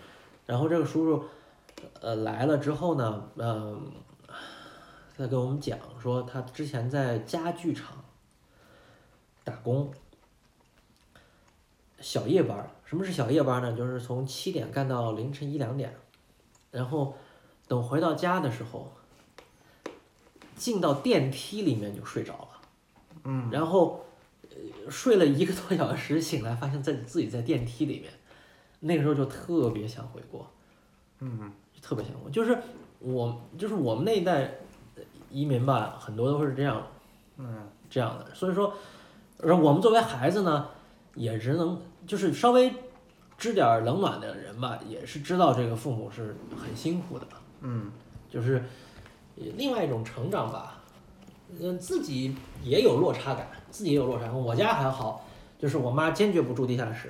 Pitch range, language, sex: 120-165 Hz, Chinese, male